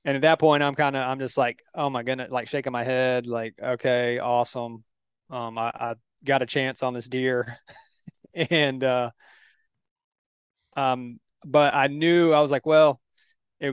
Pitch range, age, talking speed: 125-150 Hz, 20-39, 175 wpm